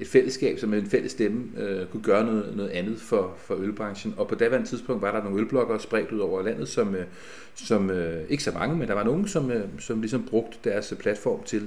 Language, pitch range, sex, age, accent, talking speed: Danish, 105-135 Hz, male, 30-49, native, 235 wpm